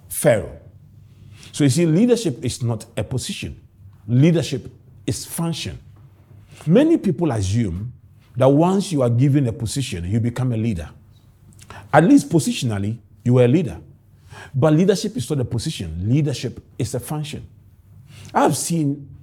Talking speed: 140 wpm